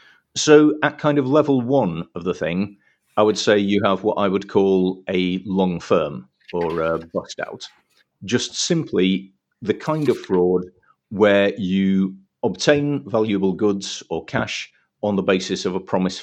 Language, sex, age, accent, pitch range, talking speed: English, male, 50-69, British, 95-125 Hz, 165 wpm